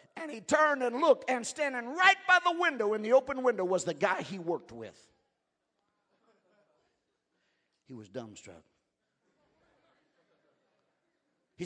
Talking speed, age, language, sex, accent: 130 wpm, 50-69, English, male, American